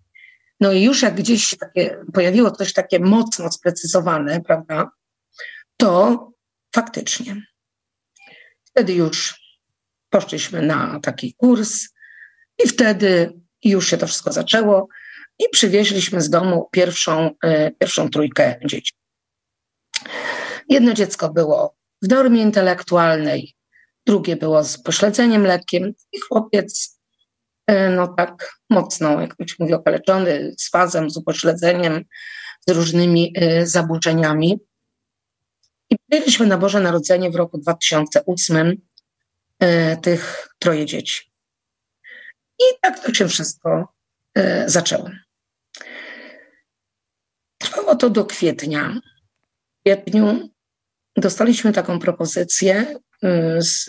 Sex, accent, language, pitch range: female, native, Polish, 170-230 Hz